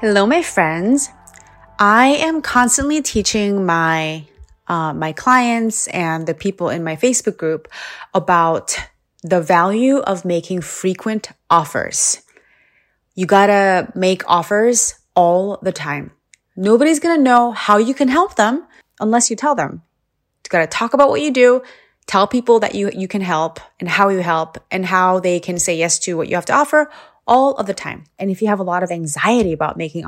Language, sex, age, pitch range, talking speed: English, female, 20-39, 175-250 Hz, 175 wpm